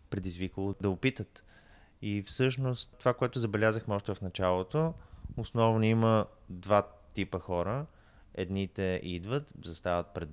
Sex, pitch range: male, 100-125 Hz